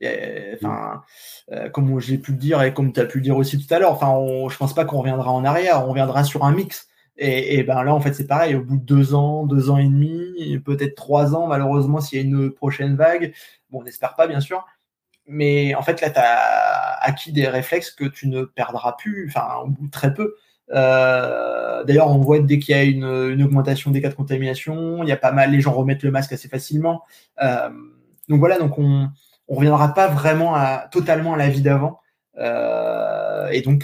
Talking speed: 225 wpm